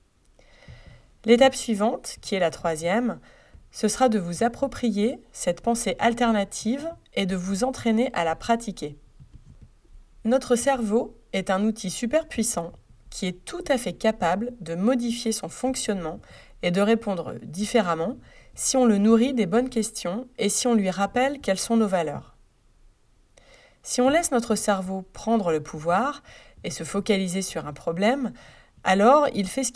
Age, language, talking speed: 30-49, French, 155 wpm